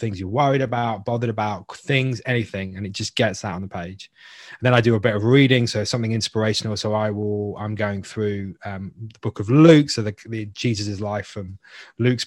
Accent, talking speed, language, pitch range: British, 220 wpm, English, 100-115 Hz